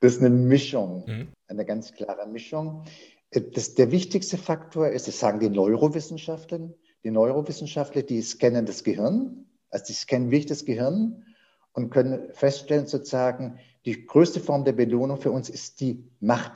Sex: male